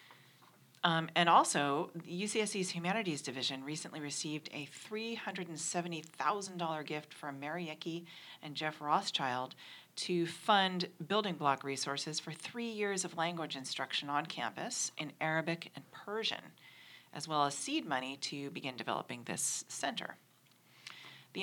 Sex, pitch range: female, 150-185 Hz